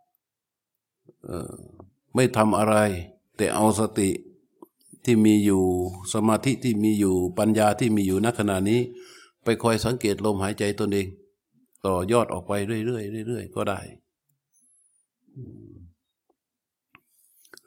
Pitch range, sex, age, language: 100-120 Hz, male, 60-79, Thai